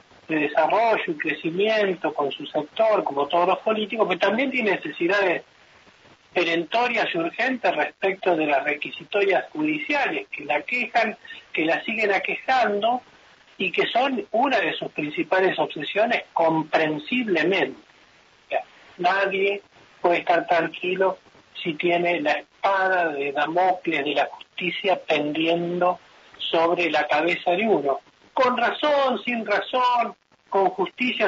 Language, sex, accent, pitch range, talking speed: Spanish, male, Argentinian, 170-235 Hz, 125 wpm